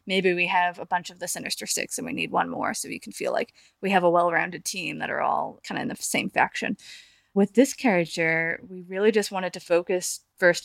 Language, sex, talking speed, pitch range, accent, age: English, female, 240 wpm, 180-215 Hz, American, 20-39